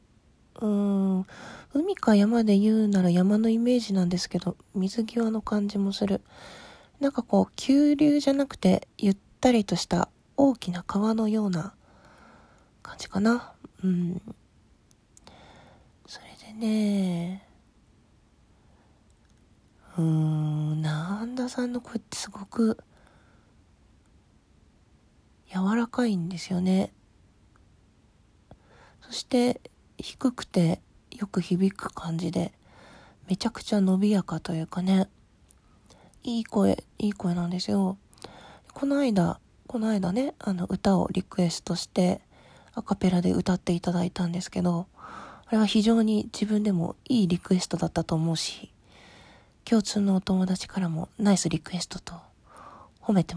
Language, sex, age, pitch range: Japanese, female, 40-59, 175-220 Hz